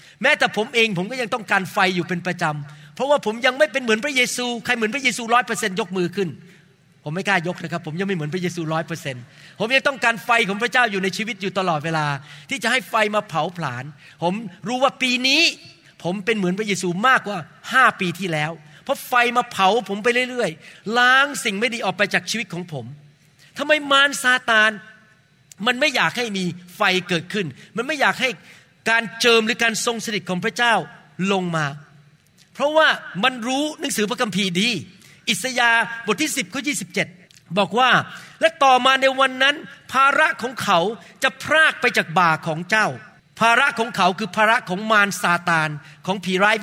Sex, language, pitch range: male, Thai, 175-245 Hz